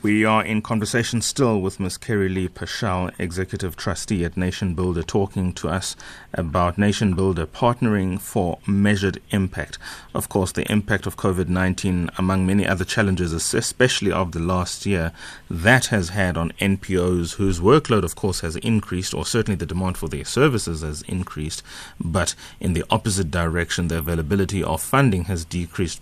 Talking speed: 165 wpm